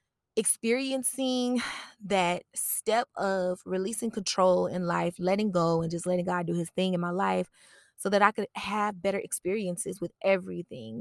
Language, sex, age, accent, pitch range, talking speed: English, female, 20-39, American, 175-220 Hz, 160 wpm